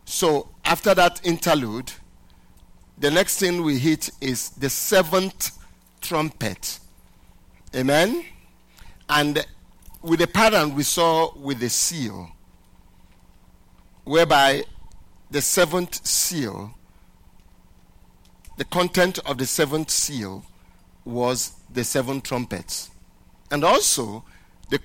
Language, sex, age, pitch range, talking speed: English, male, 50-69, 110-170 Hz, 95 wpm